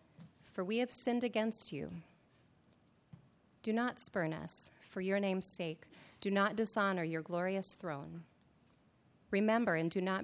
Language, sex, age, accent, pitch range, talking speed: English, female, 30-49, American, 180-210 Hz, 140 wpm